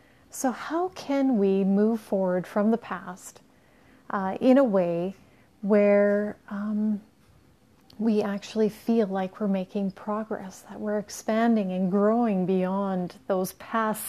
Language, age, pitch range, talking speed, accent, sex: English, 30-49, 185-220 Hz, 130 wpm, American, female